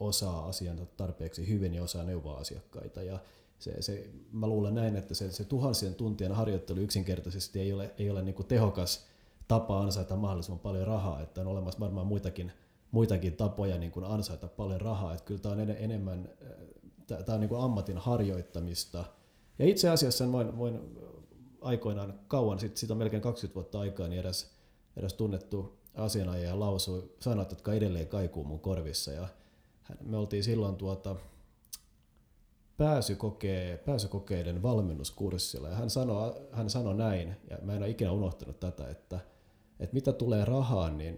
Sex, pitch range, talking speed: male, 90-110 Hz, 150 wpm